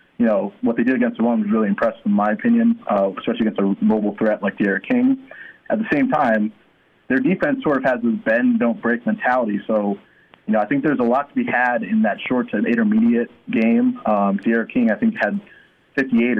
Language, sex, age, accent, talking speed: English, male, 20-39, American, 210 wpm